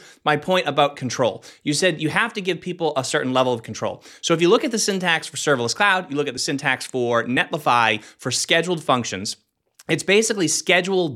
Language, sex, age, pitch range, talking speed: English, male, 30-49, 125-170 Hz, 210 wpm